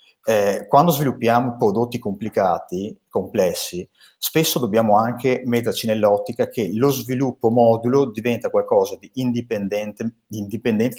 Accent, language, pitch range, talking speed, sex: native, Italian, 105-135 Hz, 105 wpm, male